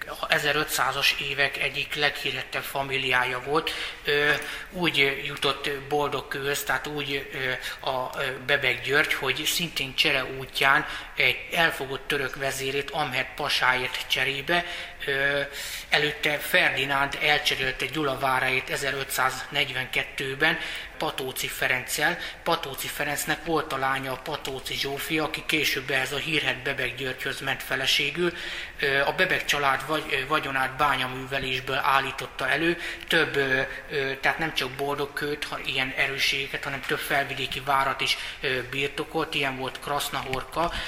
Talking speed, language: 110 wpm, Hungarian